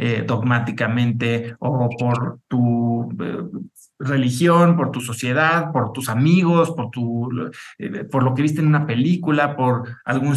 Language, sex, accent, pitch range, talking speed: English, male, Mexican, 120-155 Hz, 145 wpm